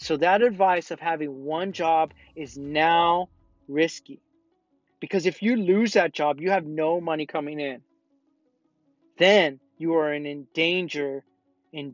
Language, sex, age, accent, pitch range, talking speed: English, male, 30-49, American, 150-190 Hz, 135 wpm